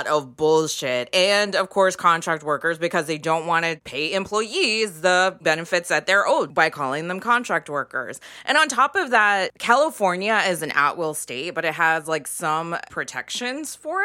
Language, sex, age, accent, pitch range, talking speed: English, female, 20-39, American, 155-220 Hz, 180 wpm